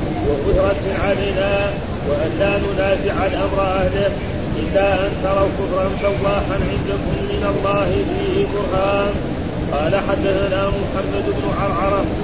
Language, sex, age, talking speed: Arabic, male, 30-49, 105 wpm